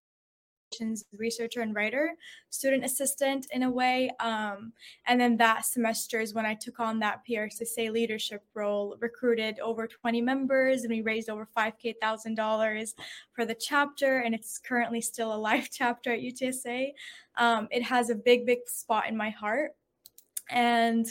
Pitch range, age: 220-255 Hz, 20-39